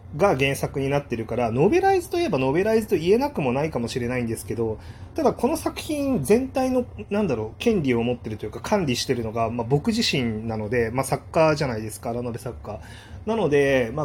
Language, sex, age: Japanese, male, 30-49